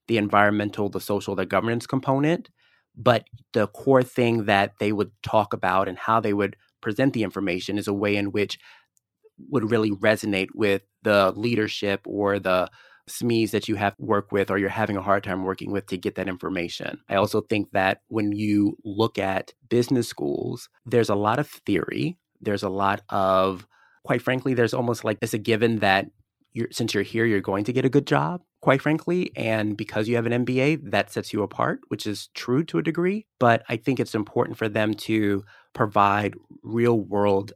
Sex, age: male, 30-49